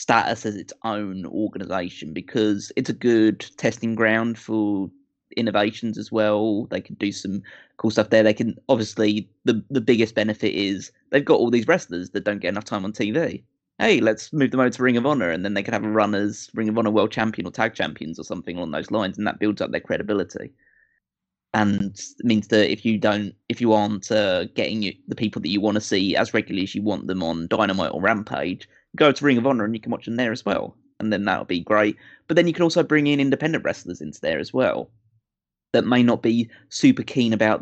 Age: 20-39